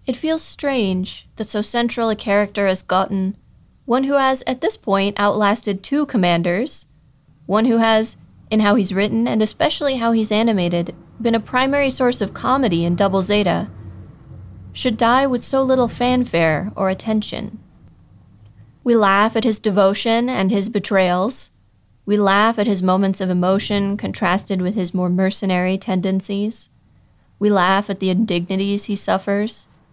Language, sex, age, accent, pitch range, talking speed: English, female, 20-39, American, 185-230 Hz, 150 wpm